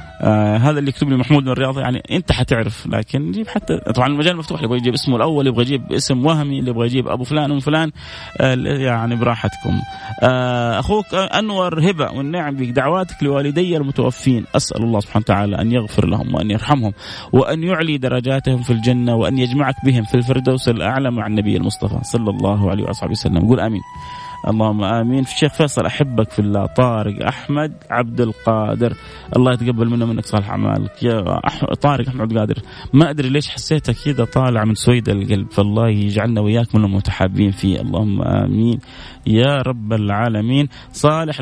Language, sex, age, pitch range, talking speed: Arabic, male, 30-49, 110-140 Hz, 175 wpm